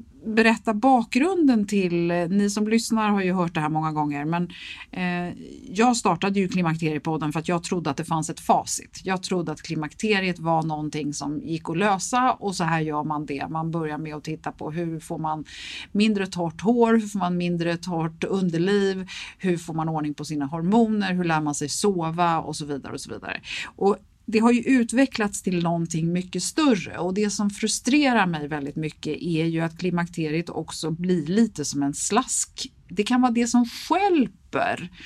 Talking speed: 190 wpm